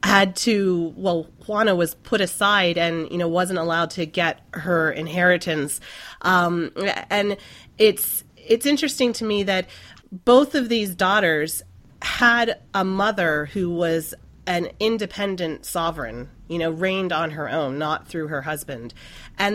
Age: 30-49